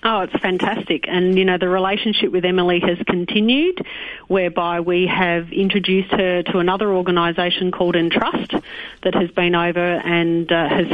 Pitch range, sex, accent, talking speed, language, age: 175-200 Hz, female, Australian, 160 wpm, English, 40-59